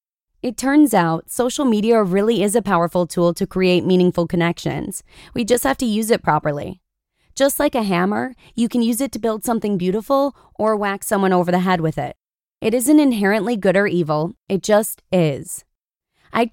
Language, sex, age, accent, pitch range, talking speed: English, female, 20-39, American, 175-230 Hz, 185 wpm